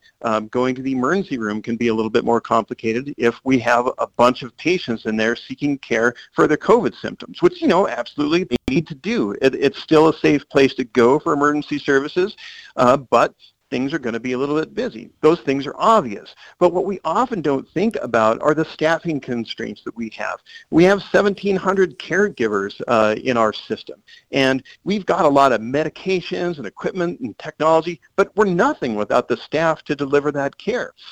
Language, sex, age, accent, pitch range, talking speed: English, male, 50-69, American, 125-165 Hz, 200 wpm